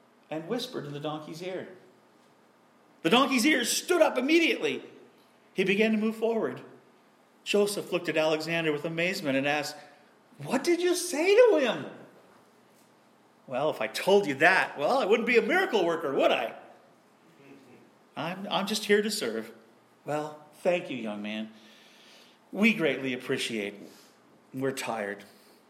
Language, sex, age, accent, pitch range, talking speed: English, male, 40-59, American, 155-235 Hz, 145 wpm